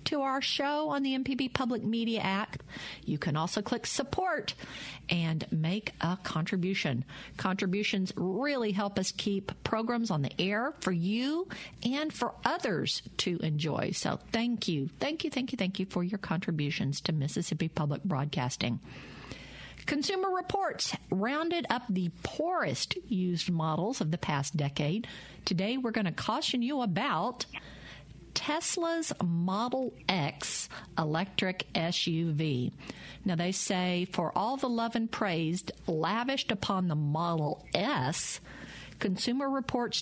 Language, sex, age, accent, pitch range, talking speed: English, female, 50-69, American, 160-230 Hz, 135 wpm